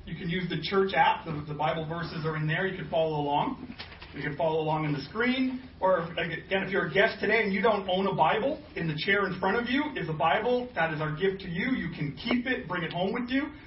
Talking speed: 270 wpm